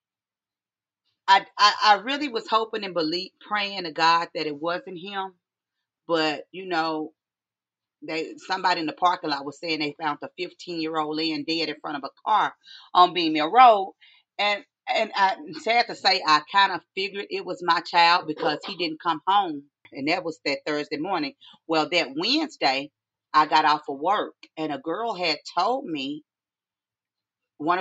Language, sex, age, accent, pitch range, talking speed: English, female, 40-59, American, 155-210 Hz, 170 wpm